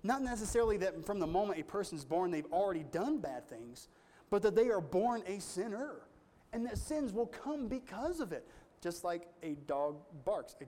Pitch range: 135-195 Hz